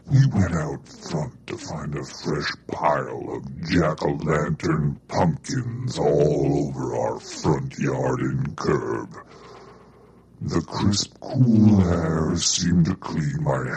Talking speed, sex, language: 120 wpm, female, English